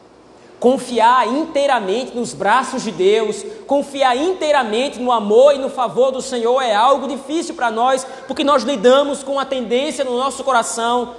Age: 20-39